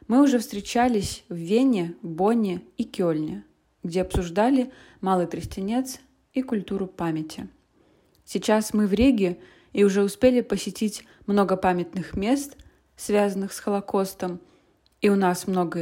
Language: Russian